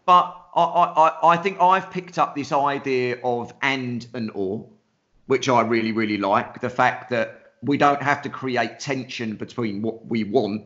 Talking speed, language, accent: 180 wpm, English, British